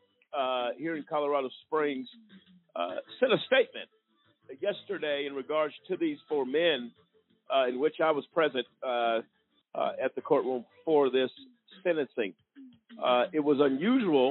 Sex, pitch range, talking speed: male, 135-220 Hz, 145 wpm